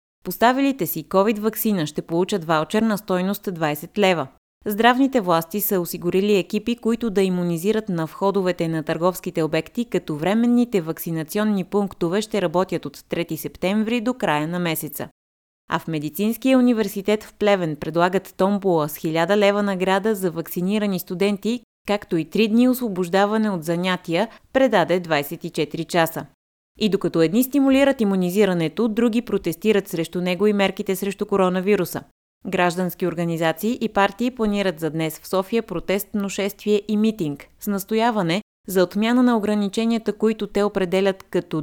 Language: Bulgarian